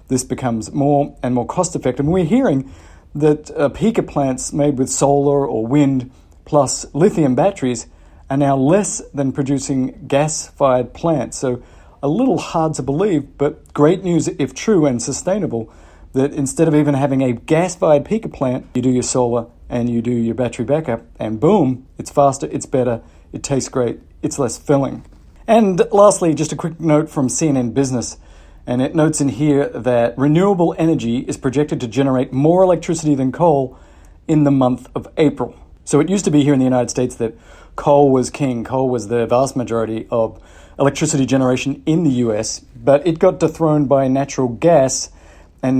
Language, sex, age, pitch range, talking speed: English, male, 40-59, 125-150 Hz, 175 wpm